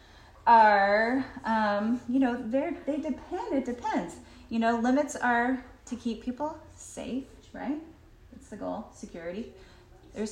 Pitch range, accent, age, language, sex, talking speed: 180-240 Hz, American, 30-49, English, female, 130 wpm